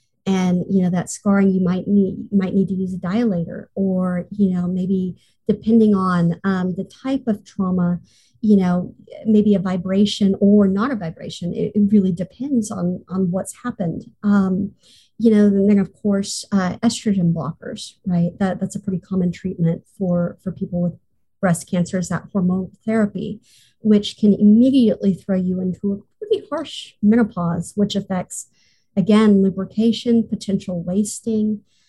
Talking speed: 160 wpm